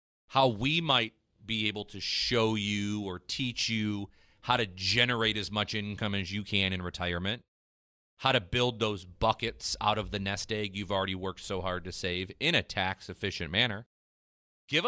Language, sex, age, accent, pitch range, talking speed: English, male, 30-49, American, 95-125 Hz, 180 wpm